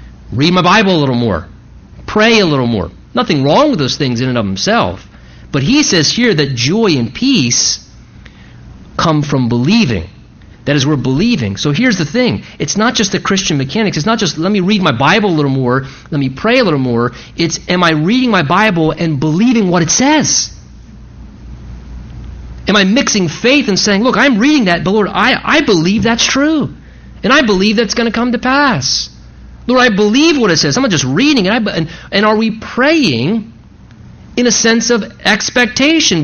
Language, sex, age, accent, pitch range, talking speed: English, male, 40-59, American, 155-235 Hz, 200 wpm